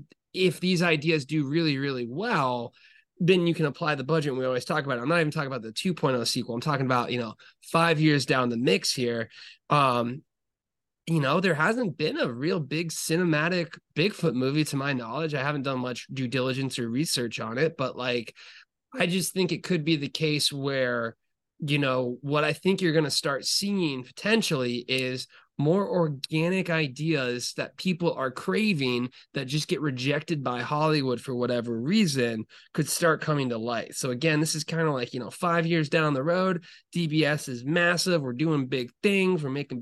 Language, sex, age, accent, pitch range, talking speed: English, male, 20-39, American, 130-170 Hz, 195 wpm